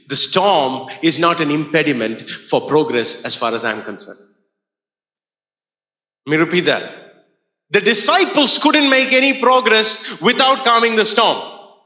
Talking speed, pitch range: 140 wpm, 220-305 Hz